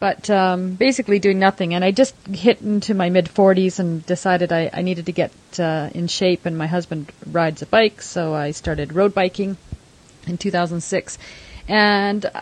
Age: 40-59